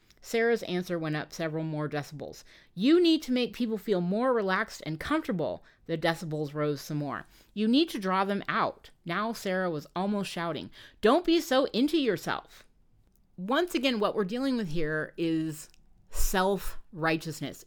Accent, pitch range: American, 160-220 Hz